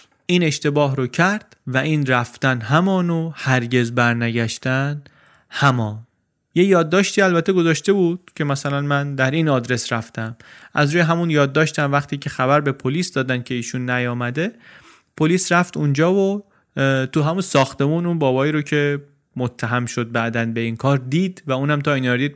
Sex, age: male, 30-49